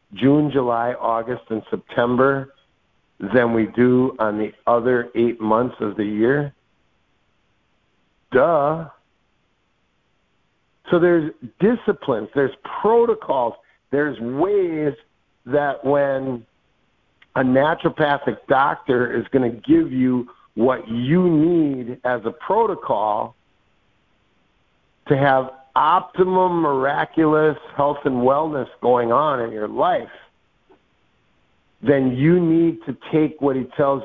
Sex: male